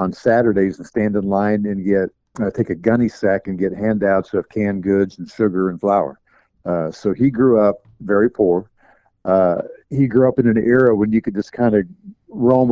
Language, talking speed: English, 210 wpm